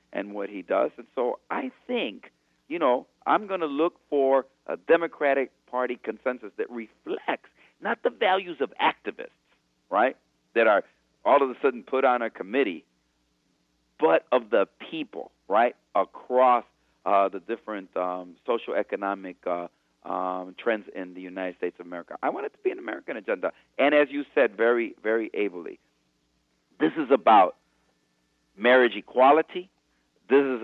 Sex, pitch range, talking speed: male, 90-155 Hz, 155 wpm